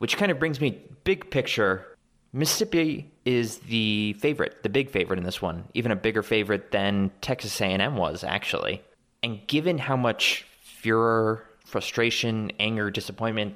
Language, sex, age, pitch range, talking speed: English, male, 20-39, 100-120 Hz, 150 wpm